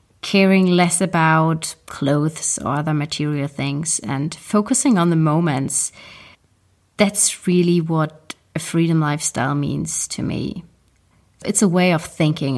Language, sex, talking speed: English, female, 130 wpm